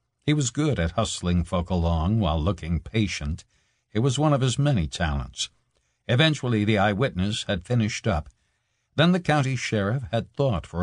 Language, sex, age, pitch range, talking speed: English, male, 60-79, 85-120 Hz, 165 wpm